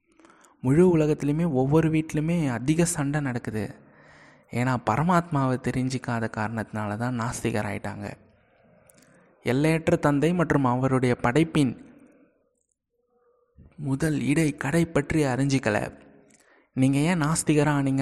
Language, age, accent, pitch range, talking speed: Tamil, 20-39, native, 125-155 Hz, 85 wpm